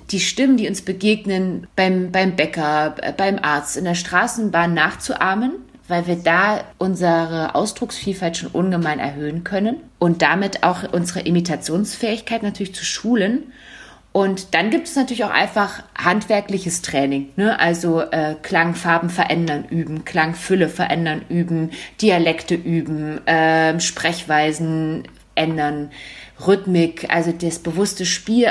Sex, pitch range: female, 160-200 Hz